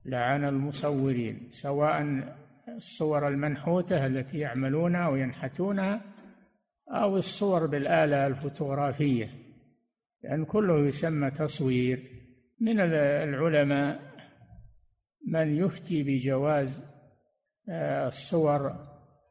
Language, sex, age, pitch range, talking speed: Arabic, male, 60-79, 135-165 Hz, 70 wpm